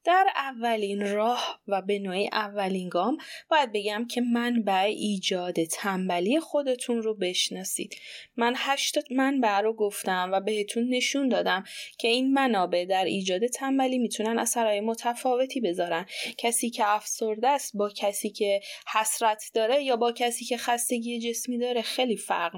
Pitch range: 200-260 Hz